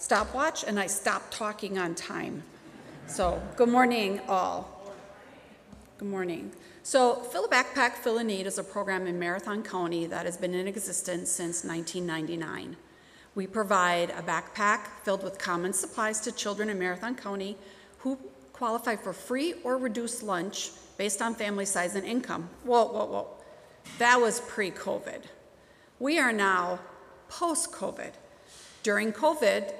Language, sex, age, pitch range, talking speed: English, female, 40-59, 185-235 Hz, 145 wpm